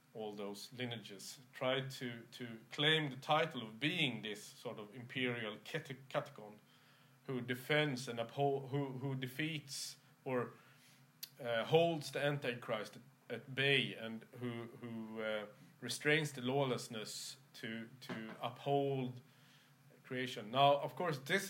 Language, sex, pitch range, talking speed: English, male, 120-145 Hz, 125 wpm